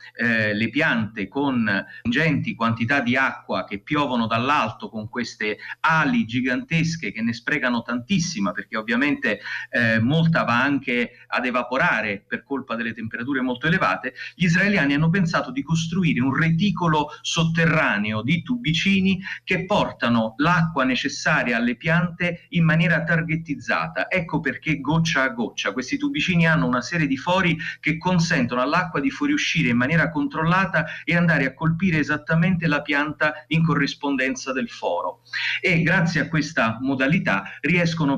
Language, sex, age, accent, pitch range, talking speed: Italian, male, 30-49, native, 120-170 Hz, 145 wpm